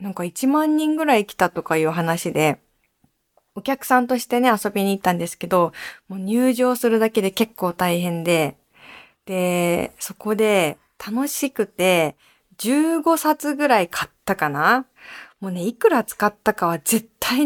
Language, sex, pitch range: Japanese, female, 175-245 Hz